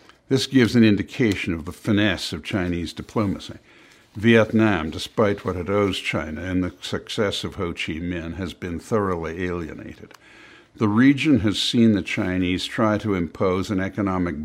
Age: 60-79